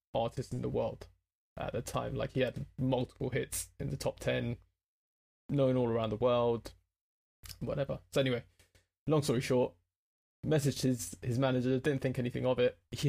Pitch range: 90-135 Hz